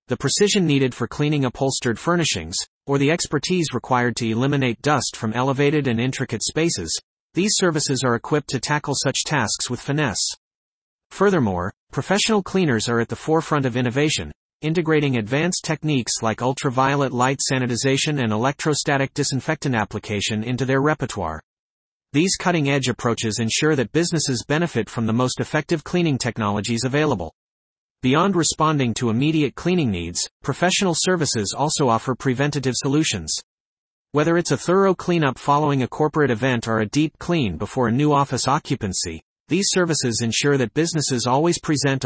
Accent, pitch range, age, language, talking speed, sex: American, 120-155 Hz, 40-59, English, 145 wpm, male